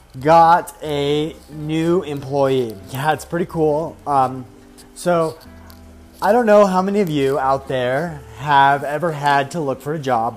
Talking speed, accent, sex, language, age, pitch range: 155 wpm, American, male, English, 30-49, 130-160 Hz